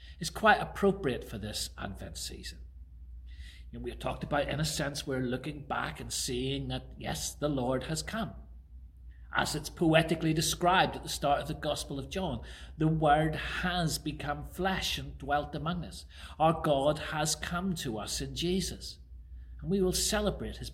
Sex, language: male, English